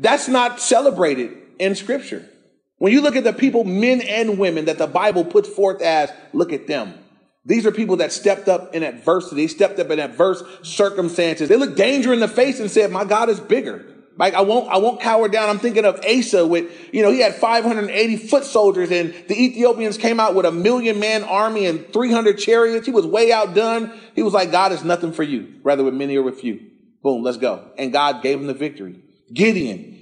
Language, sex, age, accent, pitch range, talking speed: English, male, 30-49, American, 175-230 Hz, 215 wpm